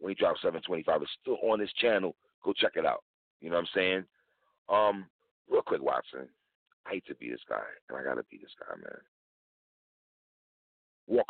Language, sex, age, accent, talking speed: English, male, 40-59, American, 195 wpm